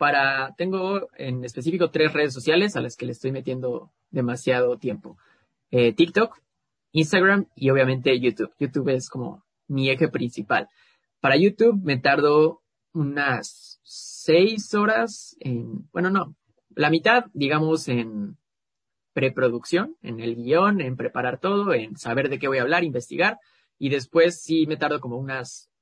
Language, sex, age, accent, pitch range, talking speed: Spanish, male, 20-39, Mexican, 125-165 Hz, 140 wpm